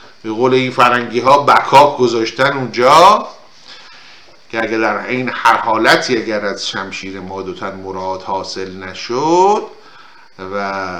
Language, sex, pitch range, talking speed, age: Persian, male, 100-145 Hz, 115 wpm, 50-69